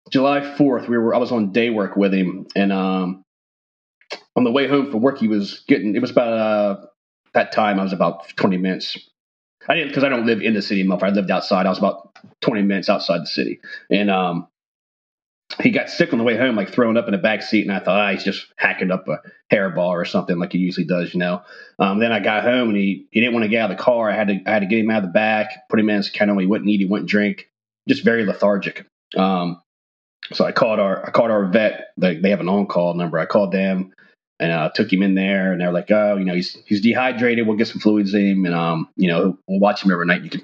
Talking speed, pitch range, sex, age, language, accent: 270 wpm, 95-110 Hz, male, 30-49, English, American